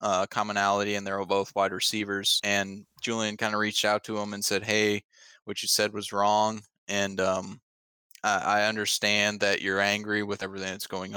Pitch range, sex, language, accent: 95-105 Hz, male, English, American